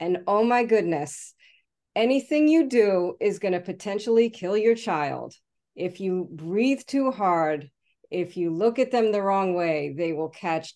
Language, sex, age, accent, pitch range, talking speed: English, female, 40-59, American, 175-220 Hz, 165 wpm